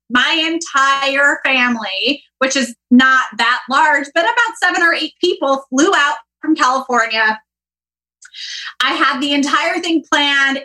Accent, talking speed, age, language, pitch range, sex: American, 135 wpm, 20-39, English, 235-295 Hz, female